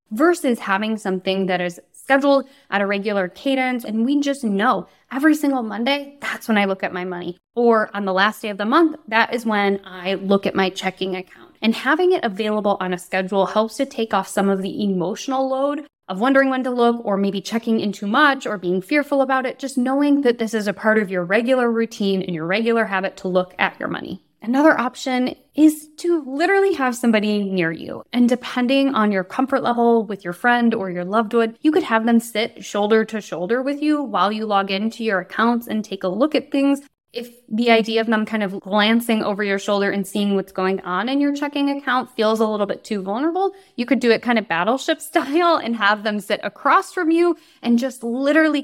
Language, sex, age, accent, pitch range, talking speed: English, female, 20-39, American, 195-265 Hz, 225 wpm